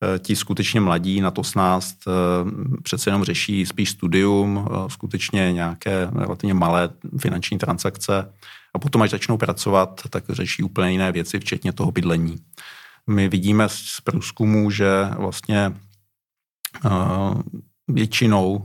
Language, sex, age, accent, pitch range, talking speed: Czech, male, 50-69, native, 95-110 Hz, 120 wpm